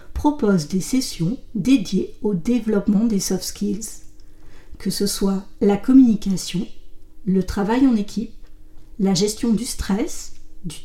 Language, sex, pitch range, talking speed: French, female, 190-245 Hz, 125 wpm